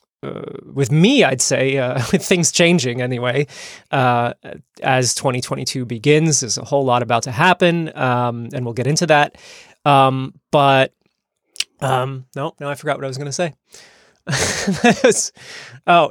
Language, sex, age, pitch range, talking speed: English, male, 20-39, 125-155 Hz, 150 wpm